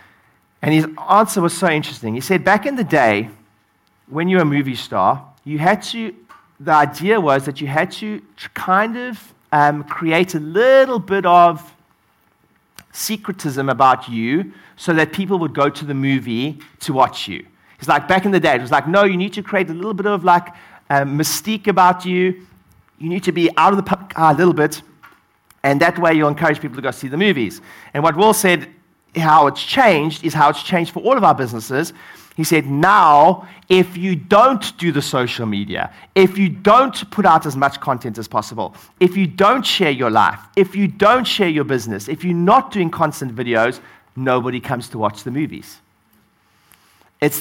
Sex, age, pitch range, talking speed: male, 40-59, 135-190 Hz, 200 wpm